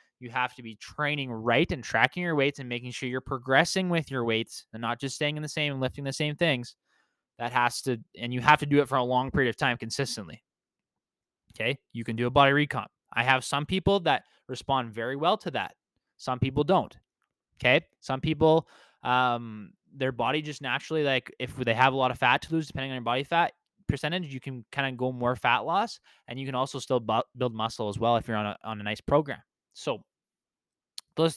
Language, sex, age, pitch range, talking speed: English, male, 20-39, 120-150 Hz, 225 wpm